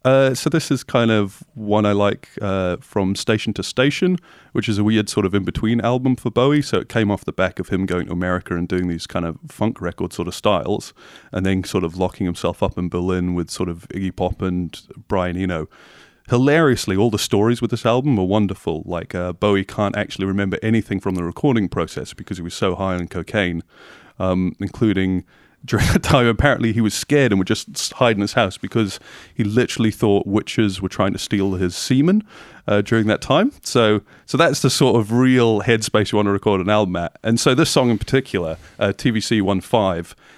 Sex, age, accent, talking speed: male, 30-49, British, 215 wpm